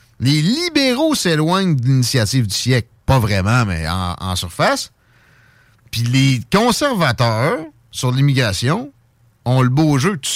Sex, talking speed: male, 135 wpm